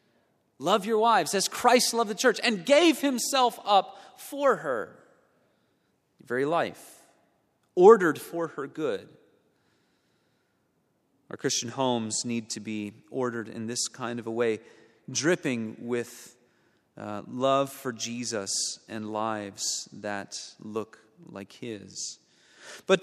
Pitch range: 135-215 Hz